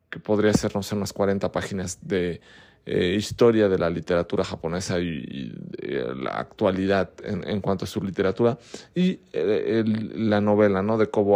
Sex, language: male, Spanish